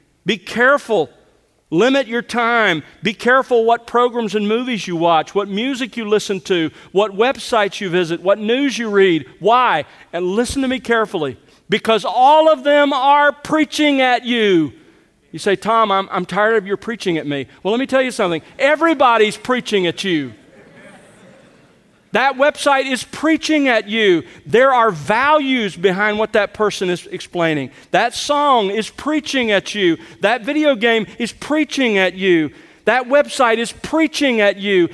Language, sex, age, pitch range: English, male, 40-59, 180-245 Hz